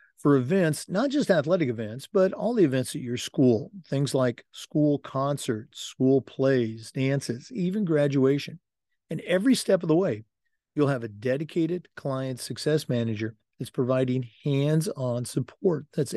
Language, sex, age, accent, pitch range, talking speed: English, male, 50-69, American, 120-155 Hz, 150 wpm